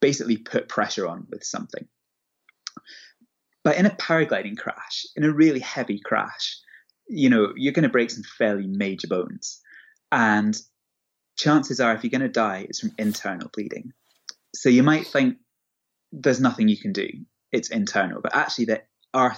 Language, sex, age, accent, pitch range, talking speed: English, male, 20-39, British, 110-160 Hz, 165 wpm